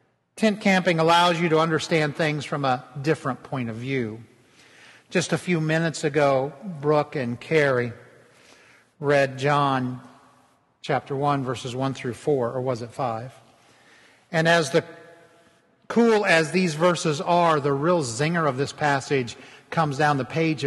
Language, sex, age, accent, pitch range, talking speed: English, male, 50-69, American, 135-170 Hz, 145 wpm